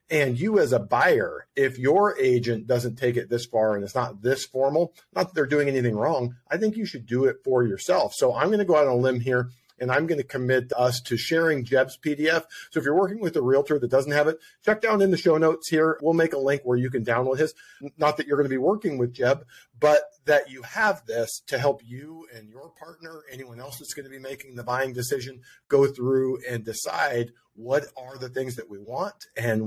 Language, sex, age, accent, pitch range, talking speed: English, male, 40-59, American, 115-145 Hz, 245 wpm